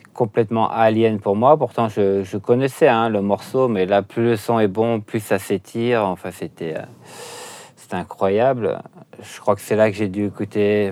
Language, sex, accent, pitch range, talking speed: French, male, French, 95-110 Hz, 190 wpm